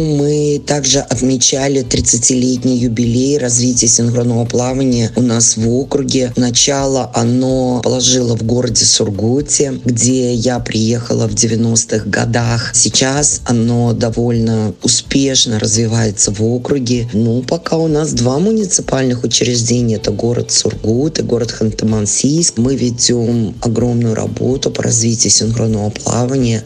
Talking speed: 115 wpm